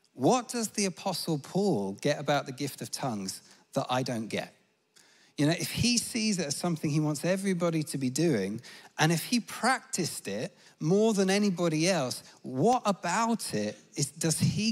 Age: 40-59